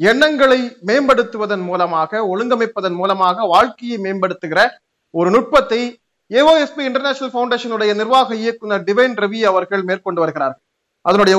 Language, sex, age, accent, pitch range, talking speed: Tamil, male, 30-49, native, 185-245 Hz, 105 wpm